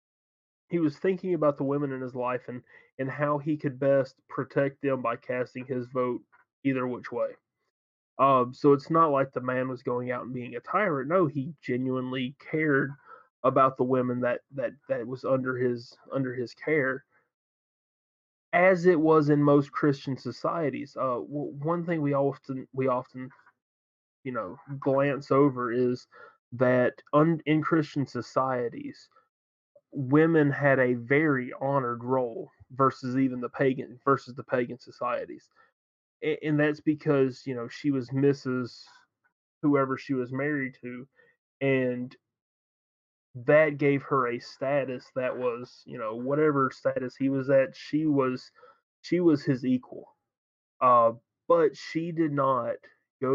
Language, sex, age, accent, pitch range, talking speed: English, male, 20-39, American, 125-145 Hz, 150 wpm